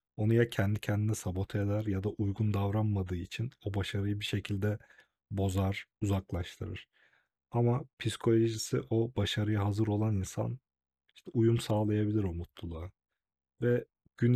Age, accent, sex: 40-59, native, male